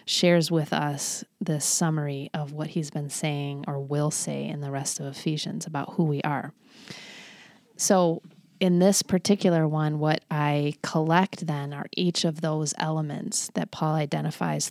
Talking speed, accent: 160 wpm, American